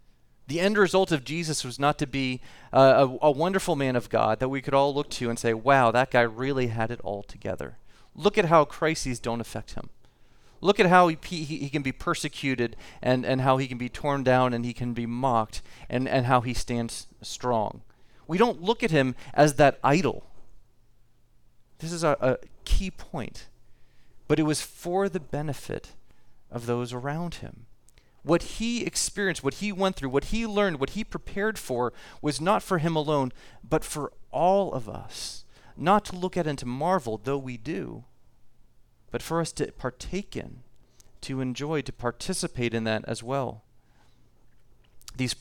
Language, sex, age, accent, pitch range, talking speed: English, male, 40-59, American, 120-160 Hz, 185 wpm